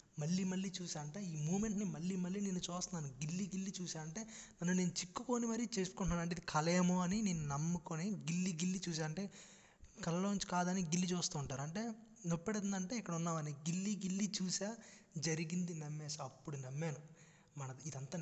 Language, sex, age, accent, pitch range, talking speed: Telugu, male, 20-39, native, 155-190 Hz, 155 wpm